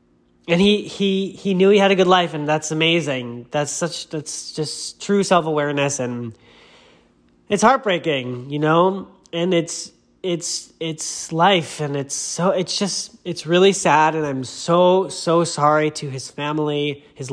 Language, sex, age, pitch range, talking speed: English, male, 30-49, 125-185 Hz, 165 wpm